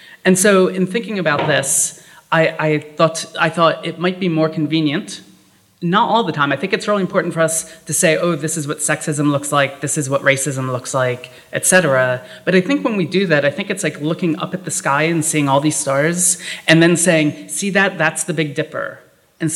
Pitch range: 145-175 Hz